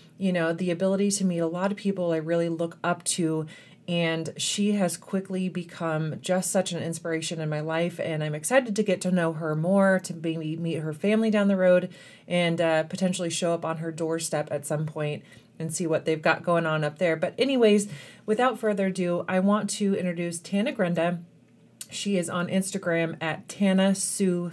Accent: American